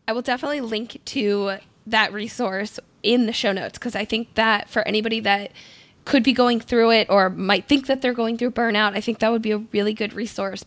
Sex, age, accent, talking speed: female, 10-29, American, 225 wpm